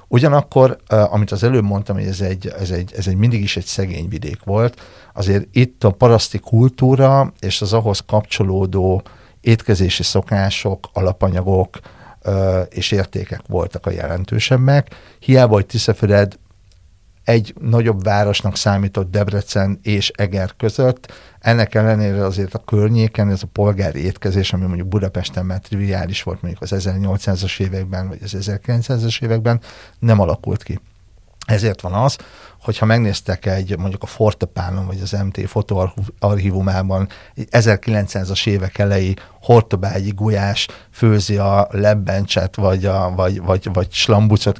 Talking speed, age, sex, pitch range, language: 135 wpm, 60-79, male, 95-110 Hz, Hungarian